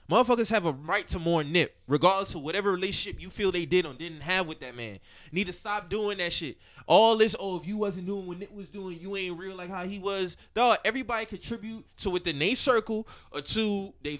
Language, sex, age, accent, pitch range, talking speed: English, male, 20-39, American, 175-220 Hz, 235 wpm